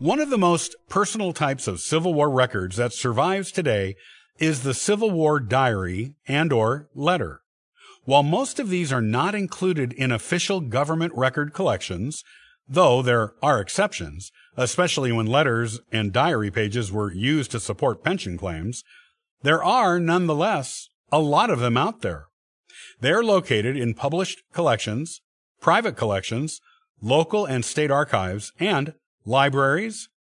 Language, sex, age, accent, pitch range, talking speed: English, male, 50-69, American, 115-175 Hz, 140 wpm